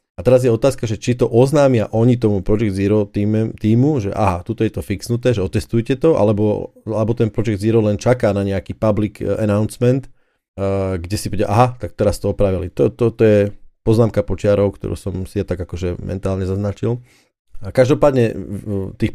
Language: Slovak